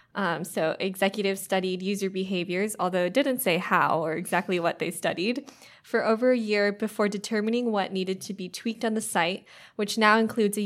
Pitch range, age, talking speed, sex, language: 185-215 Hz, 20-39, 190 wpm, female, English